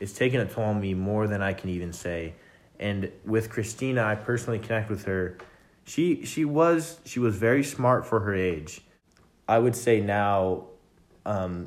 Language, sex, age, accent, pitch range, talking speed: English, male, 20-39, American, 95-110 Hz, 170 wpm